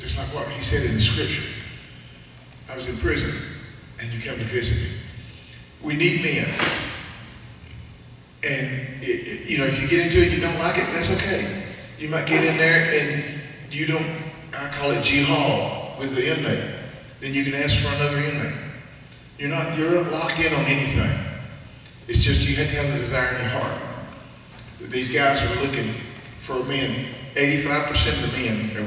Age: 40-59